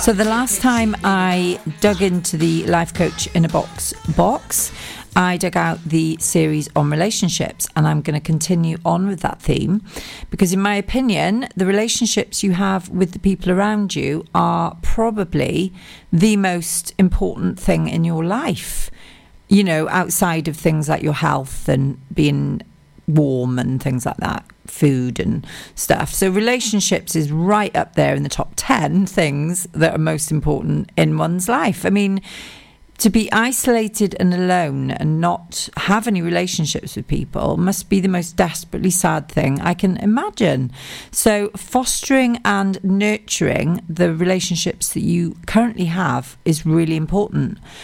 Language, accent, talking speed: English, British, 155 wpm